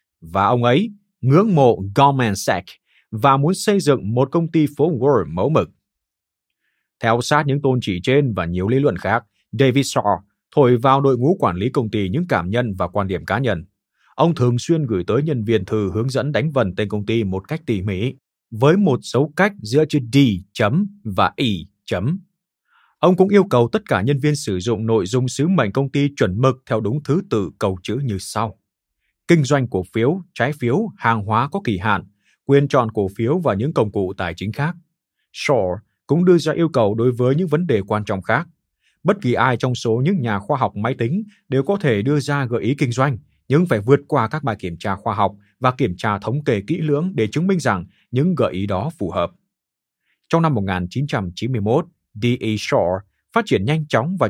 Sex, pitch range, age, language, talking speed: male, 105-150 Hz, 20-39, Vietnamese, 215 wpm